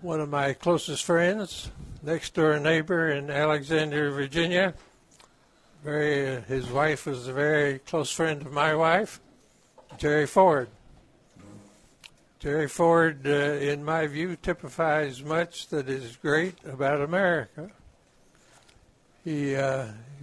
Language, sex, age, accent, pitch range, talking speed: English, male, 60-79, American, 140-165 Hz, 115 wpm